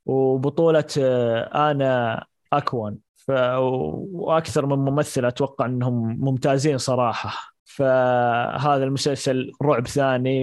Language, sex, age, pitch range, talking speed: Arabic, male, 20-39, 130-155 Hz, 85 wpm